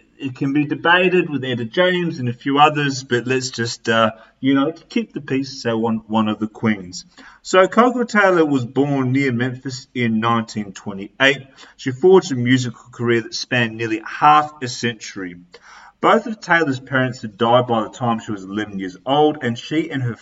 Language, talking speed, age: English, 190 wpm, 30-49